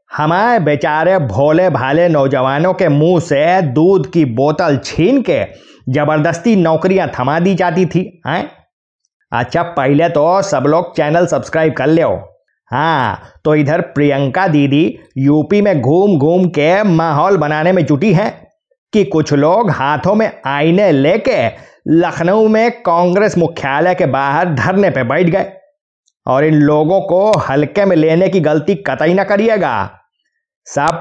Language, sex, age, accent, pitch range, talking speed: Hindi, male, 20-39, native, 150-190 Hz, 145 wpm